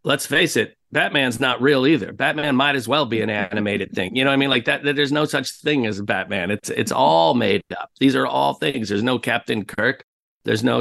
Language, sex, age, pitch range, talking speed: English, male, 40-59, 100-120 Hz, 245 wpm